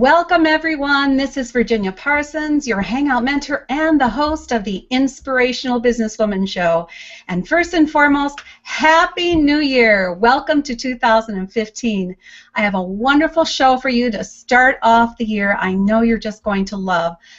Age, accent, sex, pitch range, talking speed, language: 50-69, American, female, 210-270 Hz, 160 wpm, English